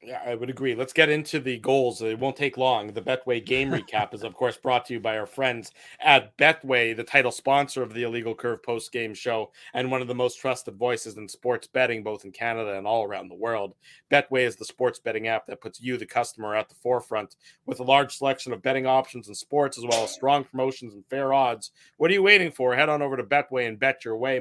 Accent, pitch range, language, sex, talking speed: American, 120-145 Hz, English, male, 250 wpm